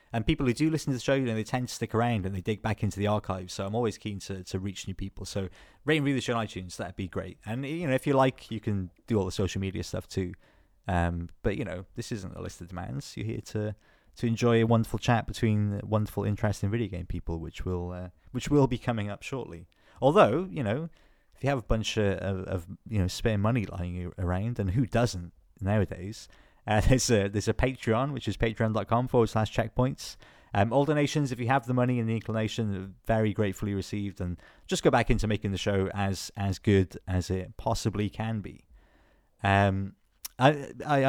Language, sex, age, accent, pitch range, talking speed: English, male, 30-49, British, 95-115 Hz, 225 wpm